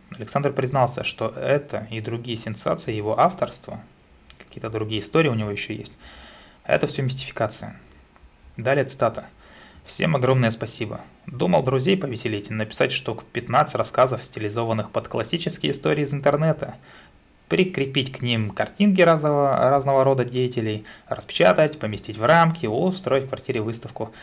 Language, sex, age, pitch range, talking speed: Russian, male, 20-39, 110-140 Hz, 130 wpm